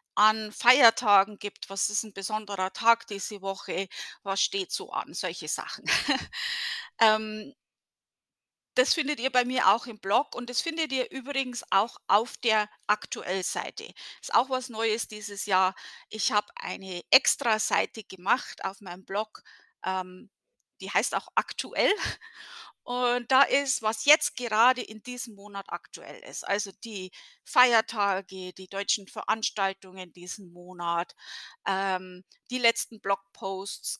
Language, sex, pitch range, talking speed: German, female, 195-240 Hz, 140 wpm